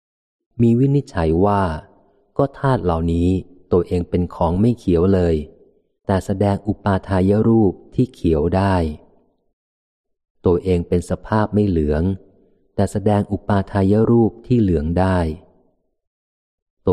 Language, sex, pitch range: Thai, male, 85-105 Hz